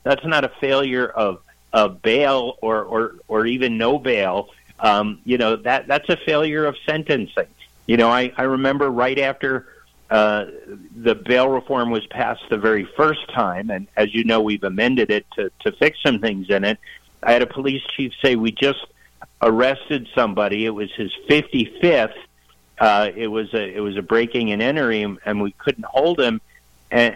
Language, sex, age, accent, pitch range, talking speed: English, male, 50-69, American, 110-150 Hz, 185 wpm